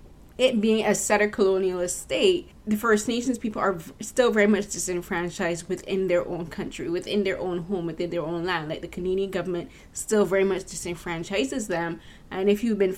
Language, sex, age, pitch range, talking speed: English, female, 20-39, 175-205 Hz, 190 wpm